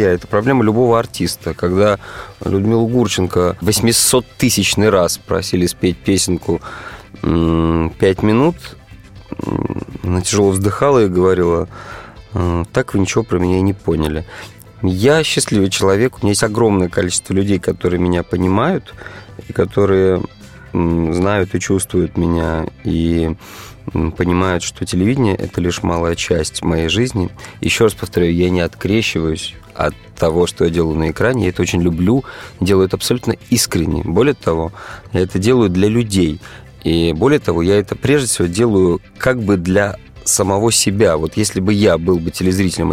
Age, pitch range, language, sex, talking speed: 30-49, 90-110 Hz, Russian, male, 145 wpm